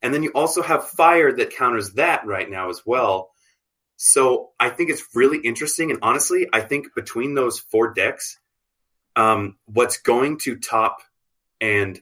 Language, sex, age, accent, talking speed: English, male, 20-39, American, 165 wpm